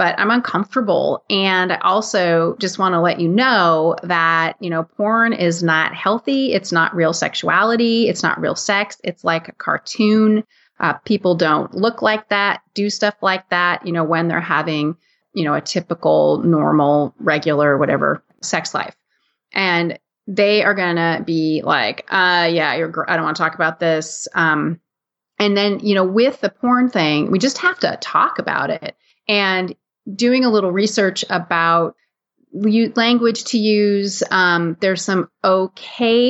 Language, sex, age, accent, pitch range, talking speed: English, female, 30-49, American, 170-225 Hz, 170 wpm